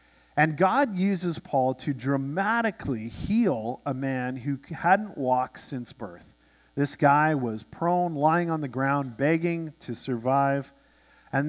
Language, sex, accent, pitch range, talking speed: English, male, American, 140-200 Hz, 135 wpm